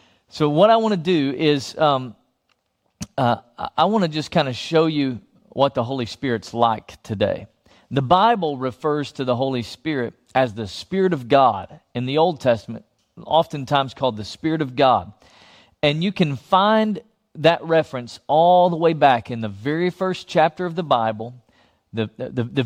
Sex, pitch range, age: male, 125-175 Hz, 40-59